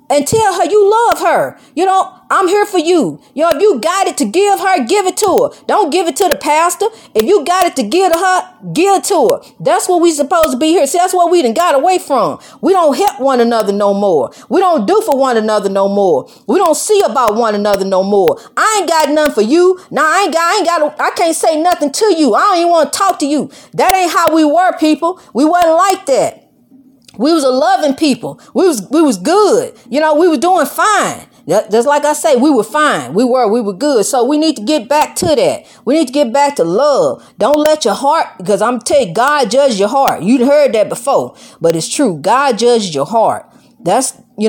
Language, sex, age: English, female, 40-59